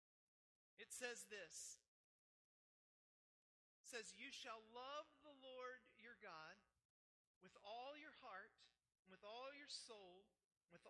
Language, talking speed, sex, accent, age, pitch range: English, 115 wpm, male, American, 40-59, 205-255 Hz